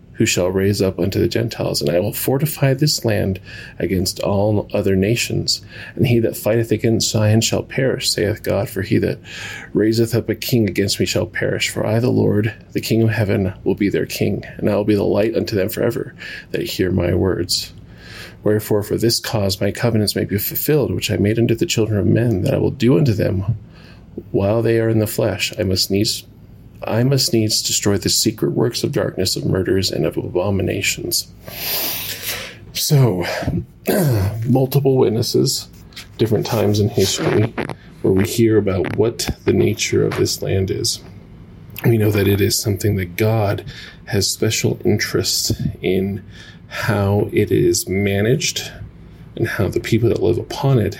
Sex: male